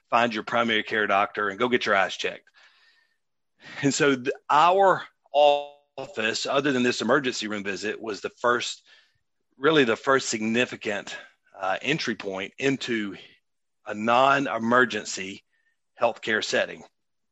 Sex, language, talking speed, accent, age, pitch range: male, English, 125 wpm, American, 40-59, 110-145 Hz